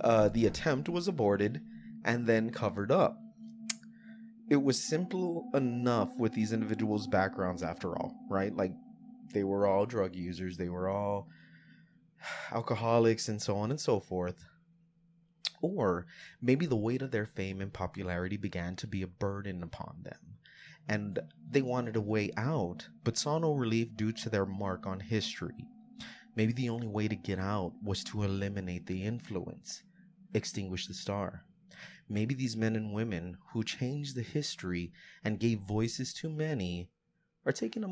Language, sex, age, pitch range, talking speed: English, male, 20-39, 95-130 Hz, 160 wpm